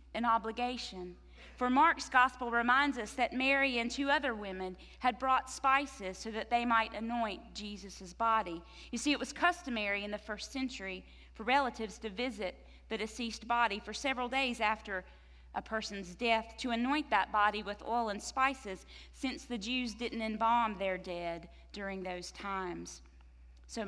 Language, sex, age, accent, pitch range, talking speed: English, female, 40-59, American, 170-240 Hz, 165 wpm